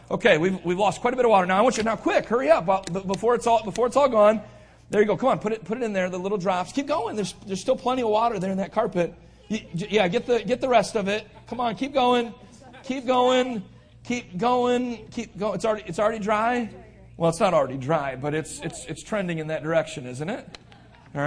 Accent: American